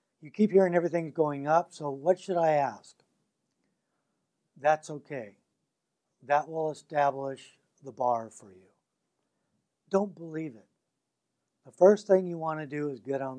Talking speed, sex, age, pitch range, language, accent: 150 wpm, male, 60-79, 135-175 Hz, English, American